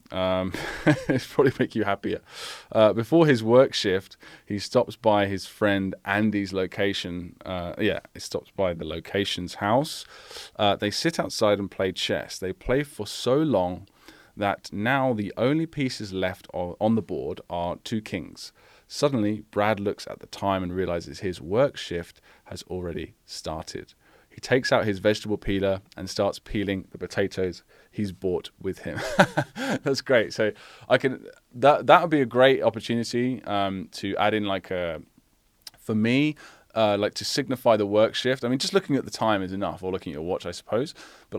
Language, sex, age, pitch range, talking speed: English, male, 20-39, 95-115 Hz, 180 wpm